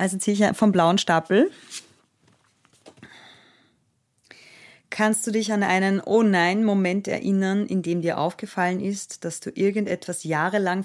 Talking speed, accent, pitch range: 120 wpm, German, 165-195 Hz